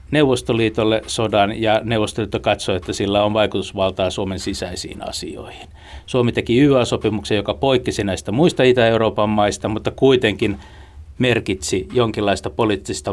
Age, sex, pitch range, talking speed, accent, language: 60-79, male, 95-115 Hz, 120 wpm, native, Finnish